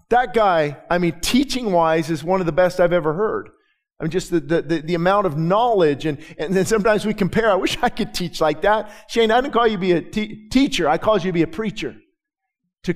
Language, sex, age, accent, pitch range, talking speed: English, male, 40-59, American, 175-225 Hz, 250 wpm